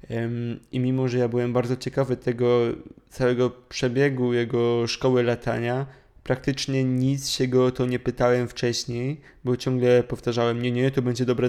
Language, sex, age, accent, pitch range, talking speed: English, male, 20-39, Polish, 120-135 Hz, 155 wpm